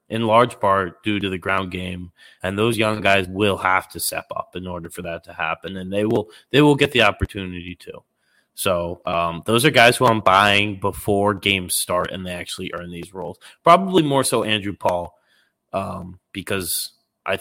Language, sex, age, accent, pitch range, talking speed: English, male, 20-39, American, 90-115 Hz, 195 wpm